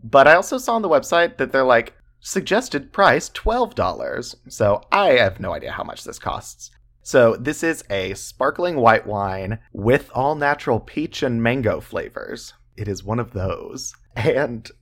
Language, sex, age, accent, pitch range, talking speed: English, male, 30-49, American, 105-135 Hz, 165 wpm